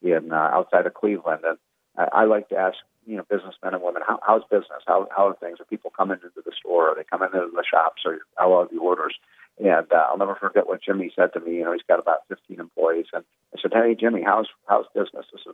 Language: English